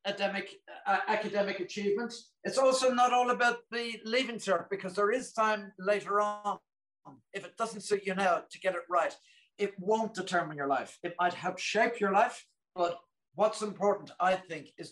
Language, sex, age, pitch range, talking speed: English, male, 60-79, 170-210 Hz, 180 wpm